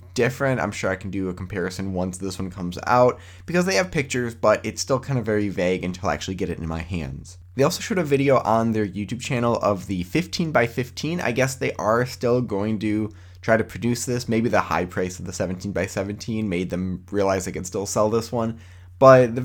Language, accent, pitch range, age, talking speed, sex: English, American, 95-130 Hz, 20-39, 225 wpm, male